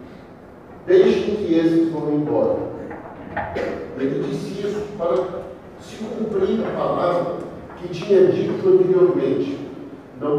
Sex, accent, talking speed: male, Brazilian, 105 wpm